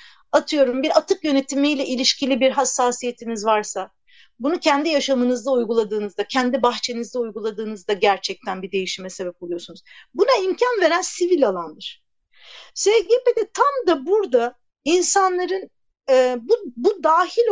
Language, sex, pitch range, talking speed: Turkish, female, 255-345 Hz, 115 wpm